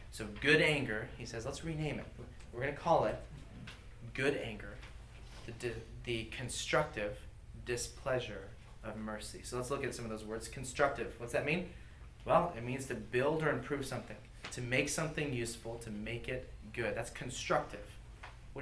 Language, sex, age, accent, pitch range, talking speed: English, male, 30-49, American, 105-125 Hz, 170 wpm